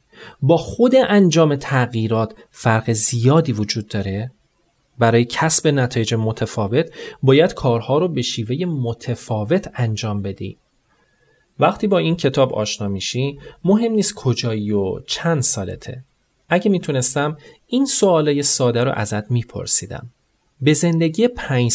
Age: 30-49